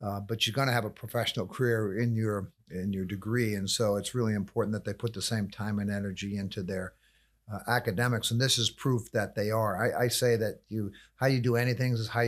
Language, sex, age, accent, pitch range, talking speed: English, male, 50-69, American, 105-125 Hz, 240 wpm